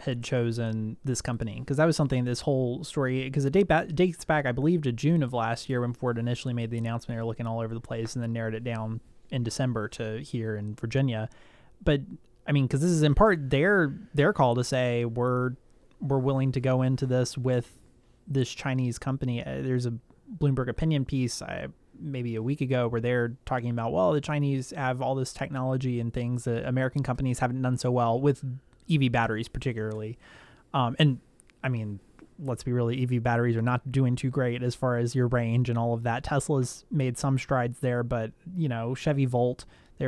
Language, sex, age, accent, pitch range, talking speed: English, male, 30-49, American, 120-140 Hz, 205 wpm